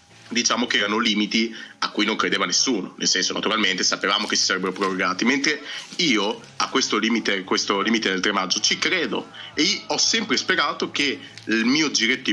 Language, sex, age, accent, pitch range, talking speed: Italian, male, 30-49, native, 95-115 Hz, 185 wpm